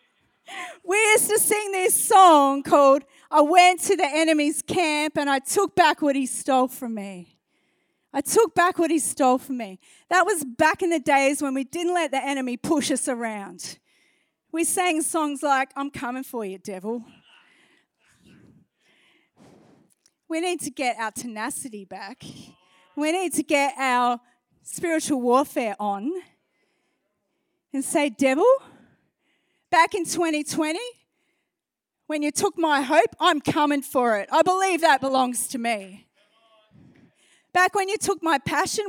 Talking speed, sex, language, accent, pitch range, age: 150 wpm, female, English, Australian, 245-330 Hz, 30-49